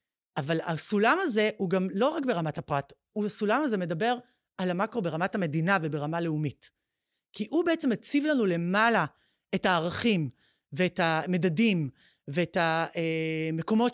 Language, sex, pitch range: Hebrew, female, 170-220 Hz